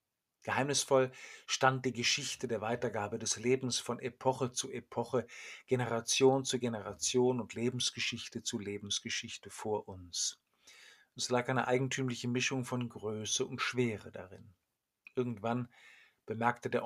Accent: German